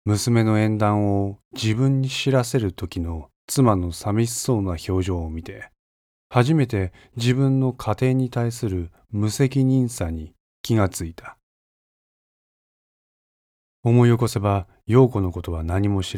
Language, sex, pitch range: Japanese, male, 90-125 Hz